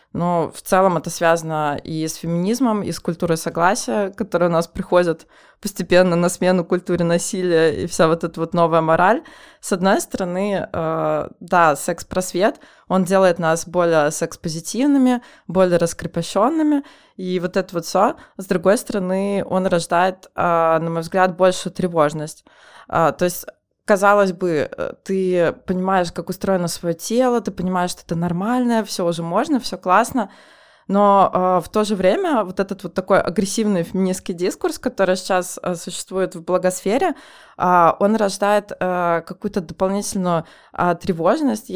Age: 20-39